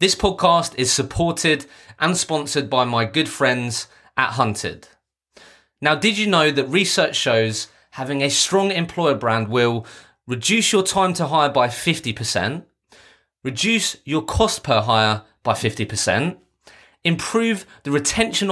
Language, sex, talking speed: English, male, 135 wpm